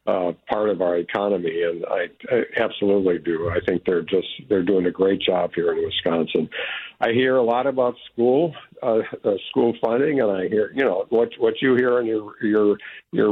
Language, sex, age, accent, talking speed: English, male, 50-69, American, 205 wpm